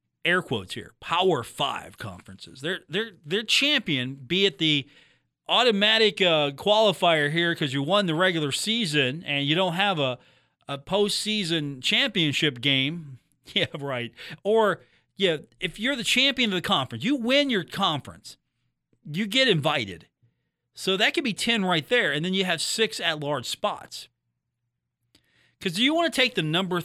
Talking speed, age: 160 wpm, 40-59